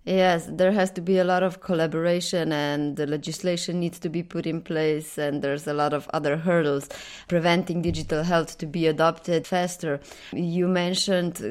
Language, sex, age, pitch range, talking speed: English, female, 20-39, 160-185 Hz, 175 wpm